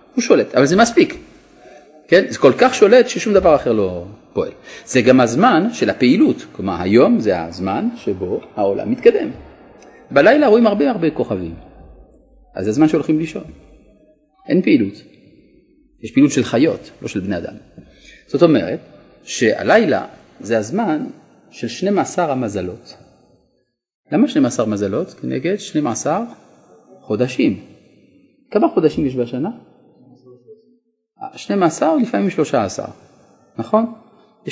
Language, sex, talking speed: Hebrew, male, 125 wpm